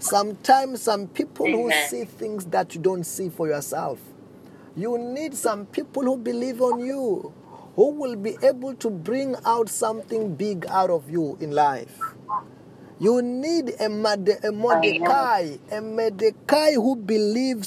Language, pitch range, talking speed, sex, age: English, 190-250 Hz, 145 wpm, male, 30-49